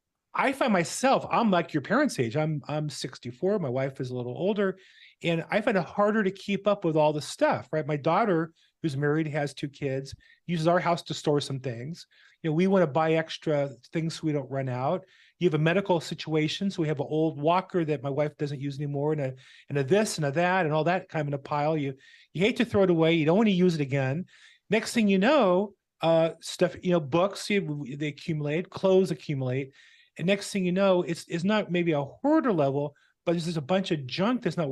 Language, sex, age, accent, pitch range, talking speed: English, male, 40-59, American, 140-180 Hz, 240 wpm